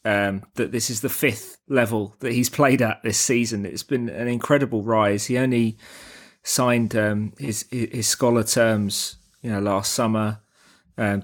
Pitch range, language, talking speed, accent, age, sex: 105-125 Hz, English, 165 wpm, British, 20-39, male